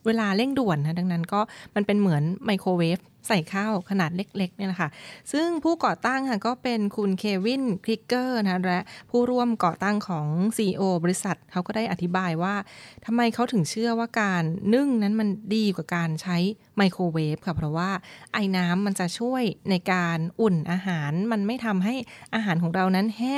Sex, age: female, 20-39